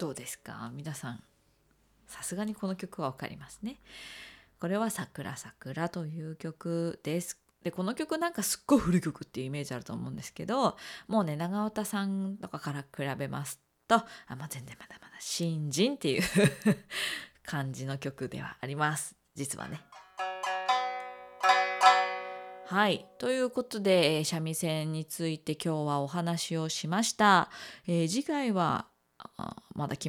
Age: 20-39